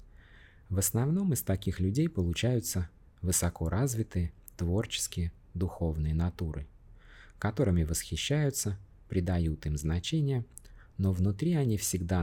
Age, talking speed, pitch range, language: 20-39, 95 wpm, 85-110 Hz, Russian